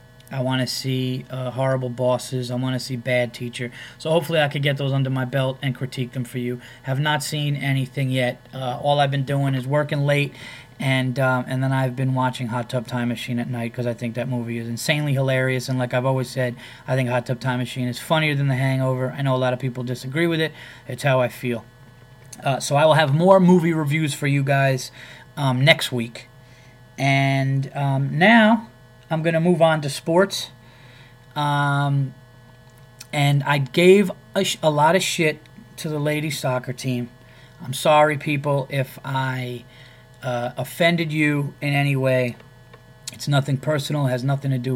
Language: English